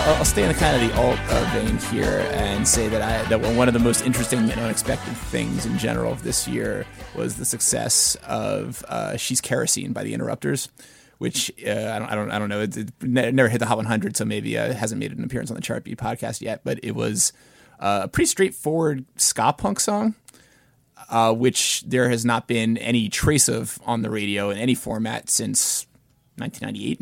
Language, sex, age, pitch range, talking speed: English, male, 20-39, 110-130 Hz, 215 wpm